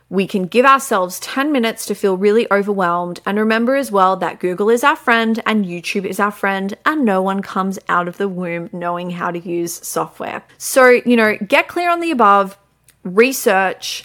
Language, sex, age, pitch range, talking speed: English, female, 30-49, 185-235 Hz, 195 wpm